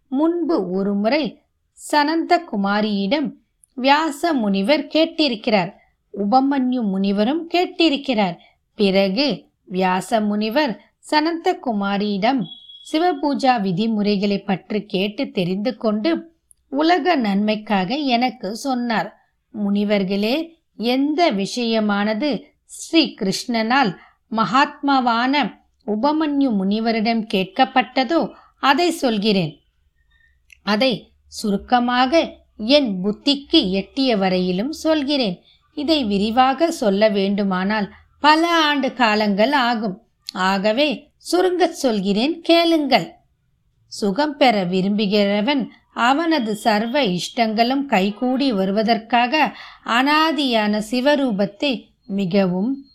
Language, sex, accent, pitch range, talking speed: Tamil, female, native, 205-290 Hz, 70 wpm